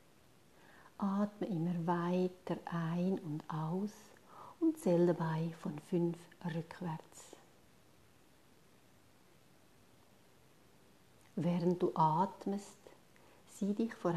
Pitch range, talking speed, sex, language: 165-195 Hz, 75 wpm, female, German